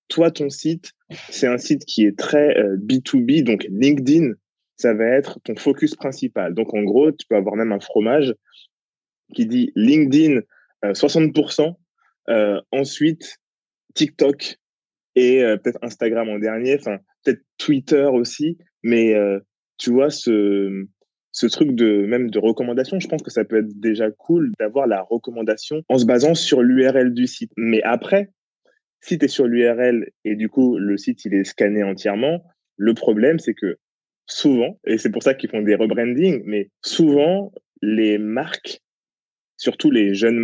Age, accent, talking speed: 20-39, French, 165 wpm